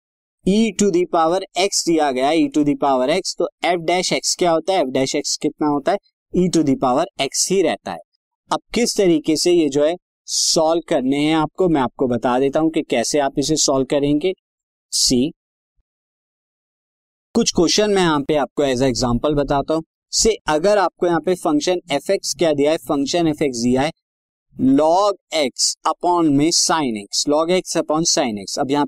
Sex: male